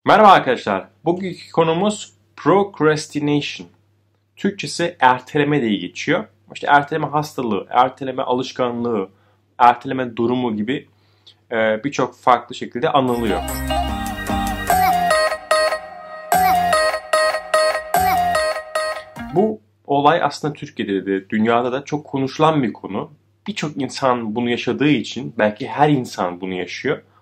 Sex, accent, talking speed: male, native, 95 wpm